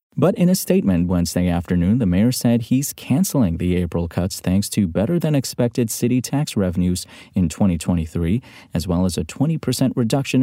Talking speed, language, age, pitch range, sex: 155 wpm, English, 30-49, 90-125 Hz, male